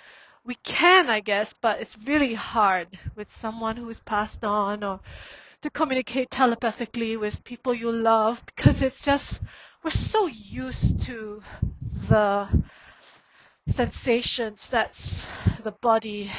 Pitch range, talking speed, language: 205-250 Hz, 125 wpm, English